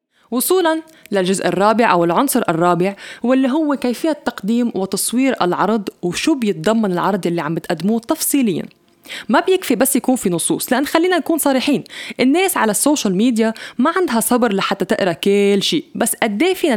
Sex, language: female, English